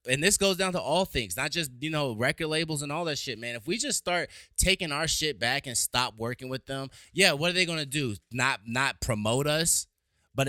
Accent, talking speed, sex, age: American, 245 wpm, male, 20-39